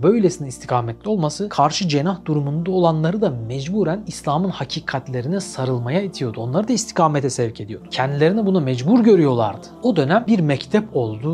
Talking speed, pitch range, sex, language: 145 wpm, 135-180 Hz, male, Turkish